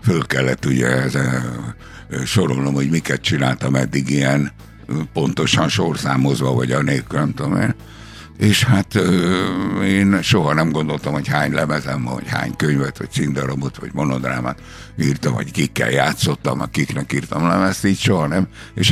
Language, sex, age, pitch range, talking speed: Hungarian, male, 60-79, 70-95 Hz, 140 wpm